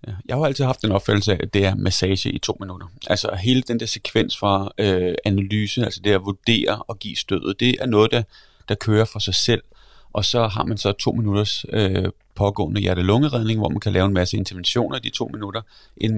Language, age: Danish, 30-49